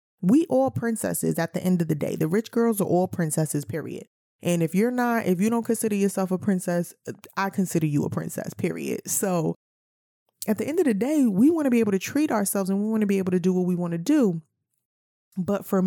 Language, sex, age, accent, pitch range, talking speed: English, female, 20-39, American, 170-220 Hz, 240 wpm